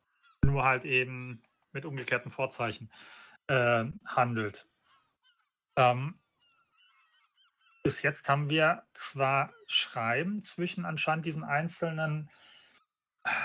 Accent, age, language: German, 40-59, German